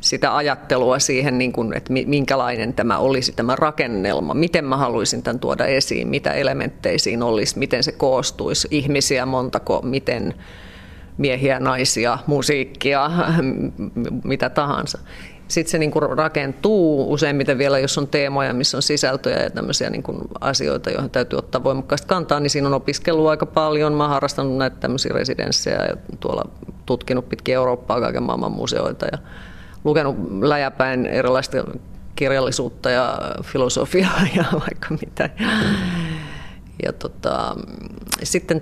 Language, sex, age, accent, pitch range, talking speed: Finnish, female, 30-49, native, 130-160 Hz, 130 wpm